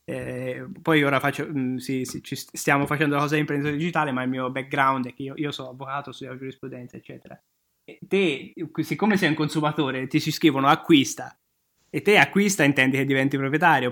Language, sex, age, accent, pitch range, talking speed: Italian, male, 20-39, native, 135-155 Hz, 190 wpm